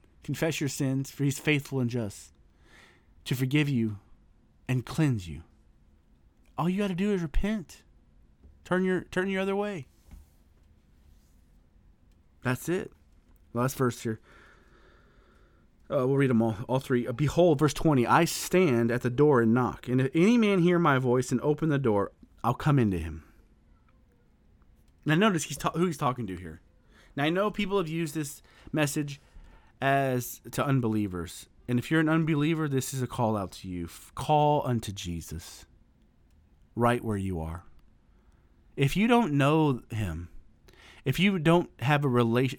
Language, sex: English, male